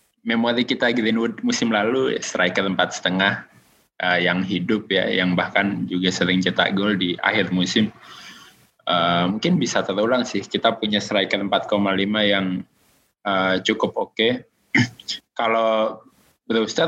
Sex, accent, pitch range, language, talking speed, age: male, native, 90-110 Hz, Indonesian, 130 wpm, 20-39